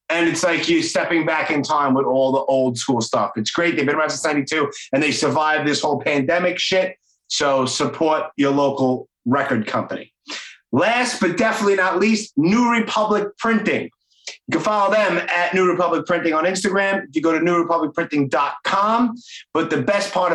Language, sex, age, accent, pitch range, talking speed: English, male, 30-49, American, 160-210 Hz, 180 wpm